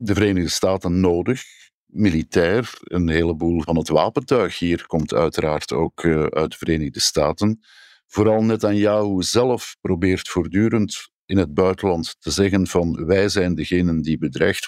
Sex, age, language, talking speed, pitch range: male, 50-69, Dutch, 140 wpm, 80-95 Hz